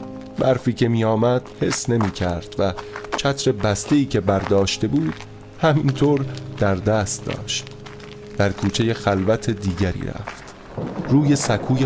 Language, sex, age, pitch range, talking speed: Persian, male, 30-49, 95-130 Hz, 115 wpm